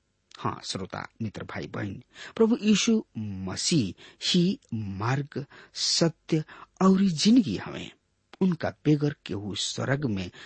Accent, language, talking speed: Indian, English, 115 wpm